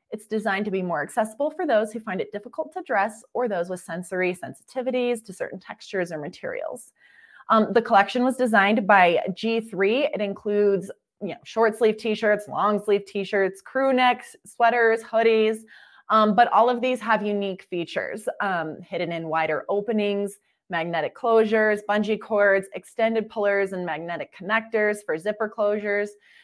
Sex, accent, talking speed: female, American, 155 wpm